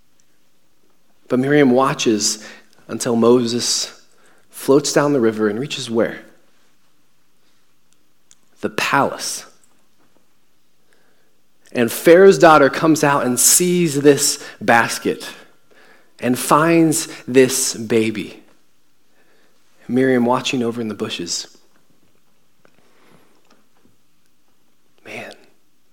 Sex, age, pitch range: male, 30-49, 125-160 Hz